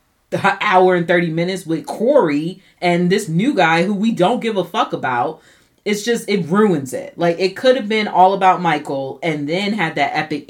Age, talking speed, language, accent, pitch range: 30-49, 205 wpm, English, American, 145-185 Hz